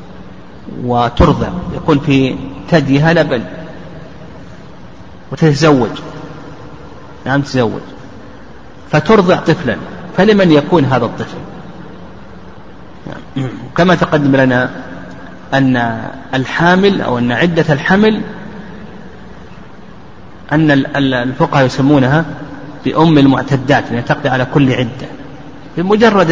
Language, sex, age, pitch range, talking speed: Arabic, male, 40-59, 130-165 Hz, 80 wpm